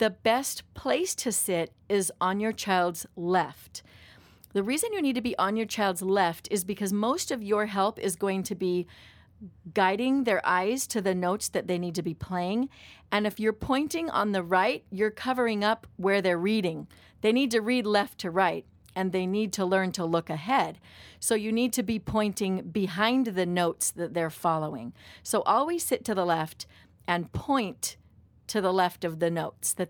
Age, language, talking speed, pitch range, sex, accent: 40-59, English, 195 wpm, 180-225 Hz, female, American